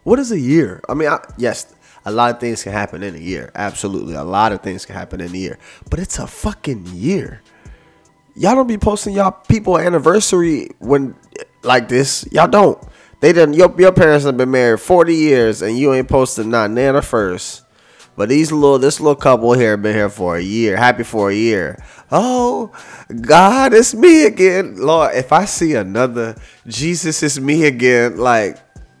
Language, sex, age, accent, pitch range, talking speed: English, male, 20-39, American, 105-155 Hz, 190 wpm